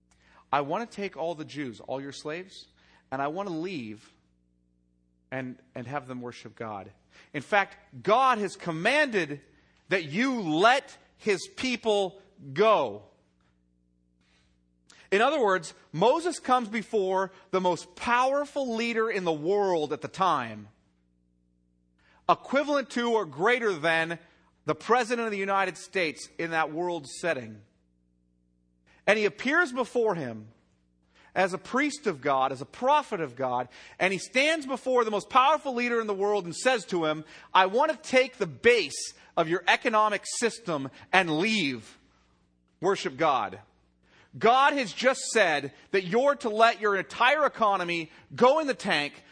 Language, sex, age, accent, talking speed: English, male, 40-59, American, 150 wpm